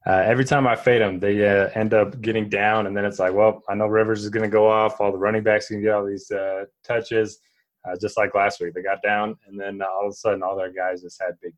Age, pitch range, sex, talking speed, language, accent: 20-39, 95-115 Hz, male, 285 wpm, English, American